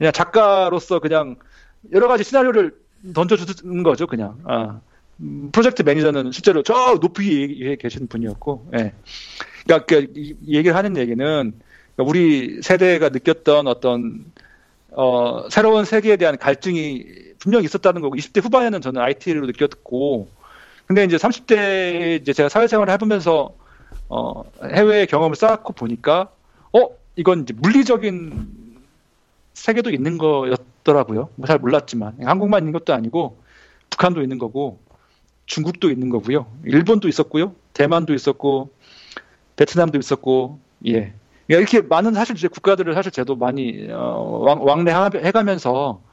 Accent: native